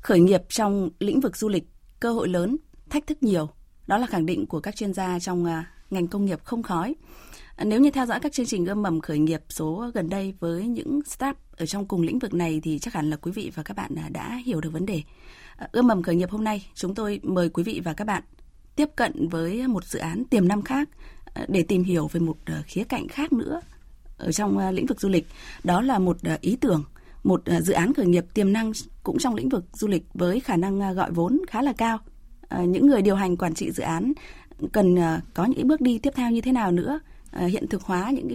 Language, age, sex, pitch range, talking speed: Vietnamese, 20-39, female, 175-245 Hz, 235 wpm